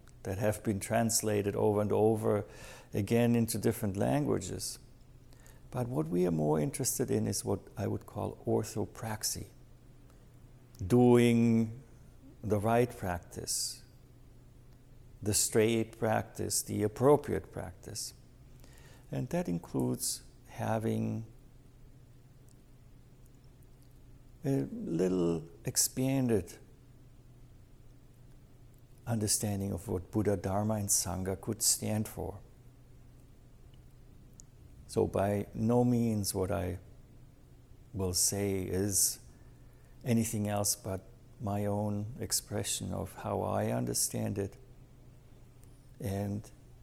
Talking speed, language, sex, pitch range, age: 90 wpm, English, male, 105-125 Hz, 60-79